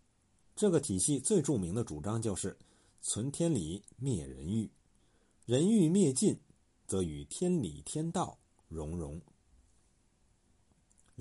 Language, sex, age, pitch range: Chinese, male, 50-69, 90-150 Hz